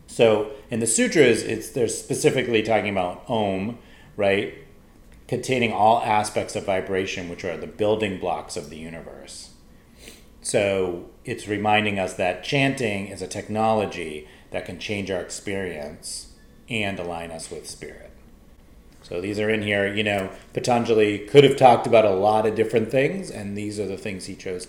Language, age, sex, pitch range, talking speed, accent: English, 30-49, male, 95-125 Hz, 165 wpm, American